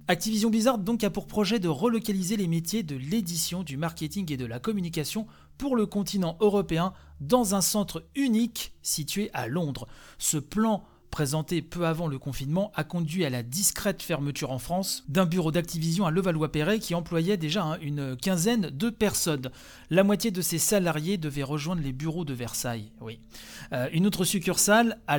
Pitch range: 150-200 Hz